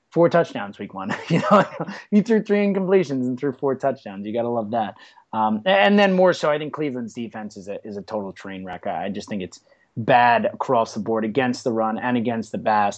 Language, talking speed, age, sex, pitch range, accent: English, 235 wpm, 30-49, male, 120-180 Hz, American